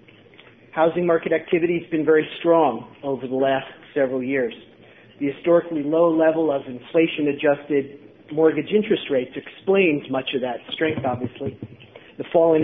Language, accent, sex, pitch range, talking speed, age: English, American, male, 135-165 Hz, 145 wpm, 40-59